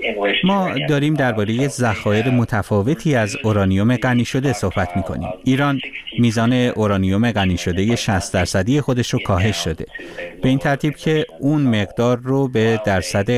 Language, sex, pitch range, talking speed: Persian, male, 100-135 Hz, 145 wpm